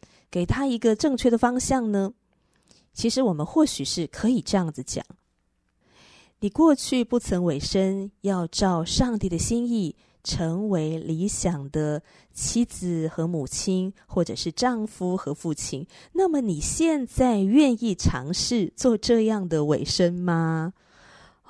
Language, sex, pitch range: Chinese, female, 165-240 Hz